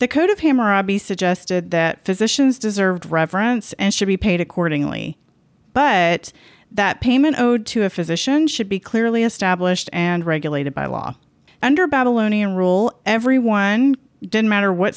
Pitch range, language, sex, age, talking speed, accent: 170-220 Hz, English, female, 30-49, 145 wpm, American